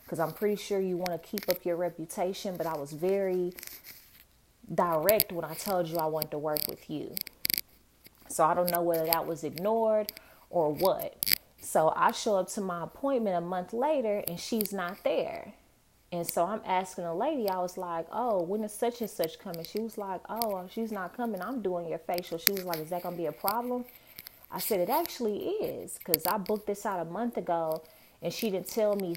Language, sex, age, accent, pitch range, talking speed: English, female, 20-39, American, 170-210 Hz, 215 wpm